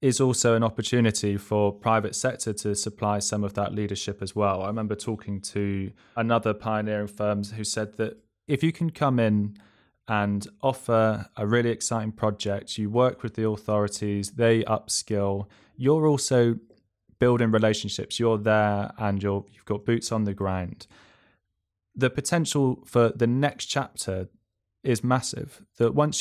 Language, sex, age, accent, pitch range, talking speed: English, male, 20-39, British, 100-120 Hz, 155 wpm